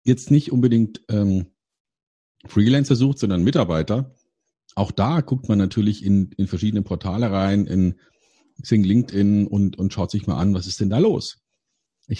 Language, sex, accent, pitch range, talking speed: German, male, German, 95-115 Hz, 160 wpm